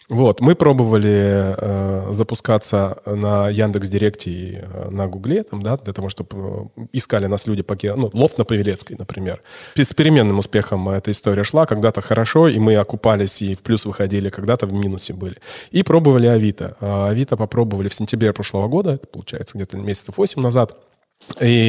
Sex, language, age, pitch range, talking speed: male, Russian, 20-39, 100-125 Hz, 165 wpm